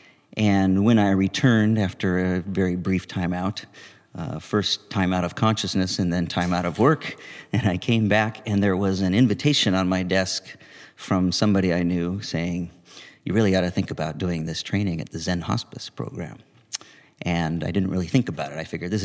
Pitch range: 90-105 Hz